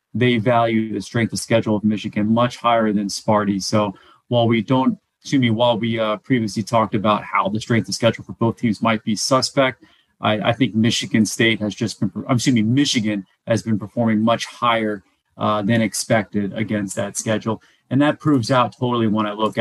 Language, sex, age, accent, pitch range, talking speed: English, male, 30-49, American, 105-120 Hz, 200 wpm